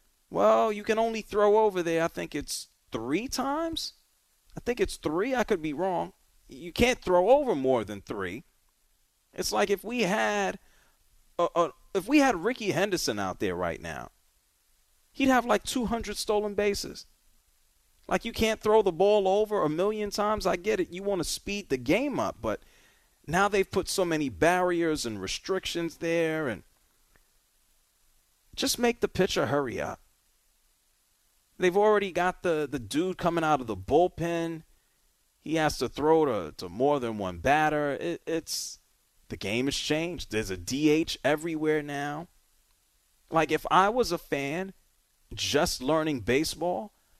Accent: American